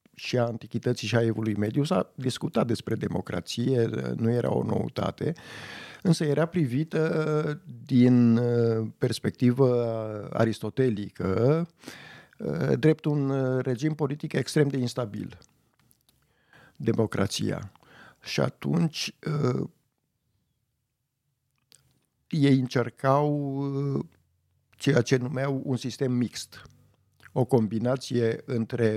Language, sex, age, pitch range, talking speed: Romanian, male, 50-69, 115-145 Hz, 85 wpm